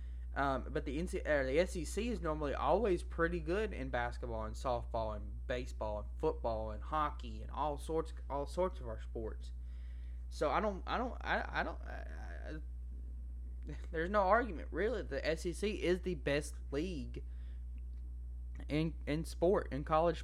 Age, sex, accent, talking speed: 20-39, male, American, 160 wpm